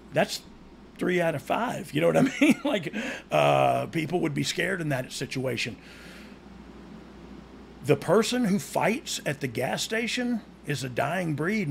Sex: male